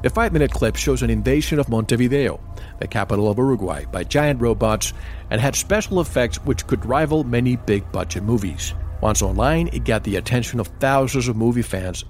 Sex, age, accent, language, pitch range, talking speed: male, 50-69, American, English, 90-125 Hz, 180 wpm